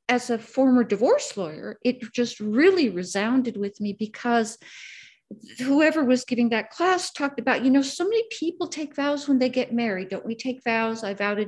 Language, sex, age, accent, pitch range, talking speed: English, female, 60-79, American, 210-265 Hz, 195 wpm